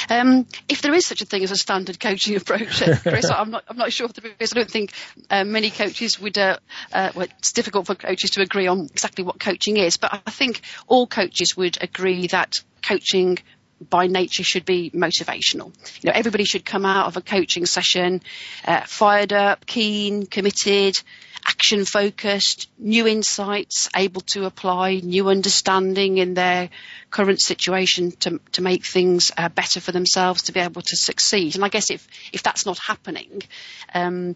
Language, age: English, 40-59